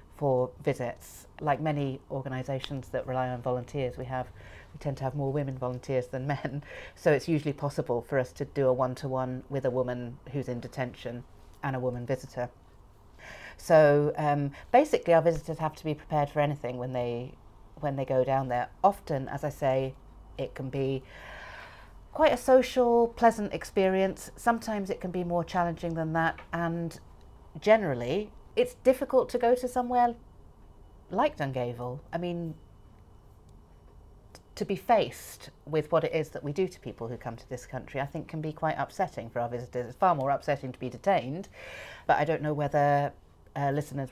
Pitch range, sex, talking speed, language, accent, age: 125-160 Hz, female, 175 wpm, English, British, 40-59